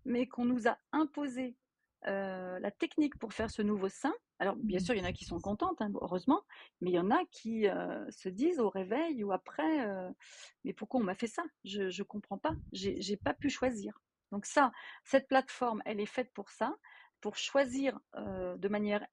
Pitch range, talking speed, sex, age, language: 215-280 Hz, 215 wpm, female, 40-59, French